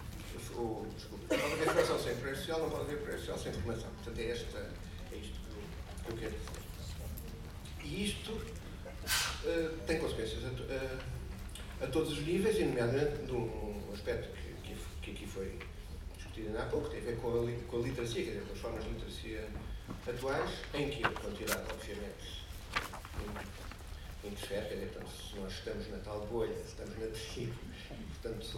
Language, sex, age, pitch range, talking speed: Portuguese, male, 50-69, 95-135 Hz, 180 wpm